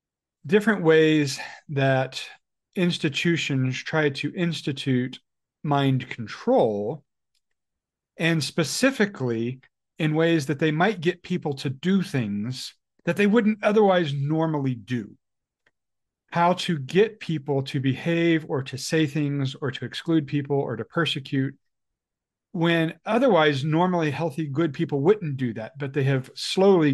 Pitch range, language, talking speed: 135-175 Hz, English, 125 wpm